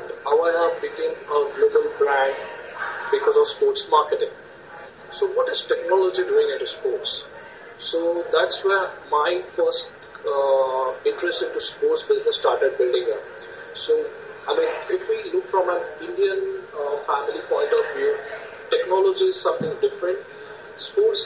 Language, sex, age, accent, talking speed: English, male, 50-69, Indian, 140 wpm